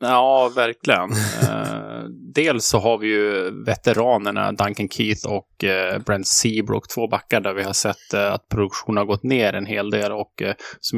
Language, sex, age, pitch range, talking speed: English, male, 20-39, 100-115 Hz, 160 wpm